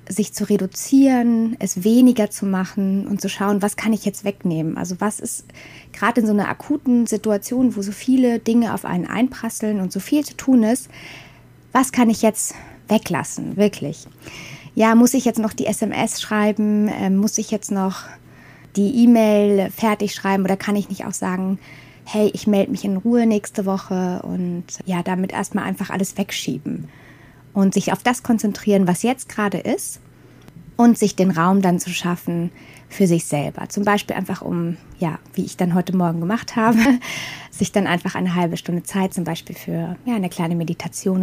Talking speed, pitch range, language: 185 wpm, 180-215 Hz, German